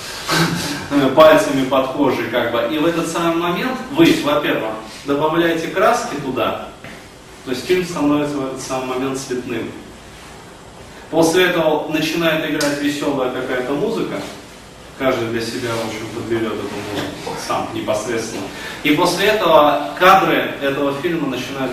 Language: Russian